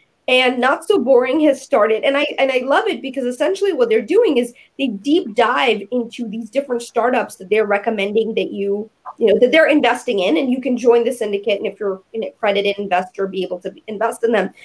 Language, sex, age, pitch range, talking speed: English, female, 20-39, 225-320 Hz, 220 wpm